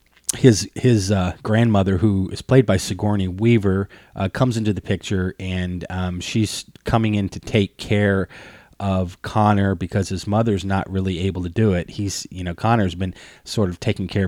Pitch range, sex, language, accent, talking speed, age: 90-105 Hz, male, English, American, 180 wpm, 30-49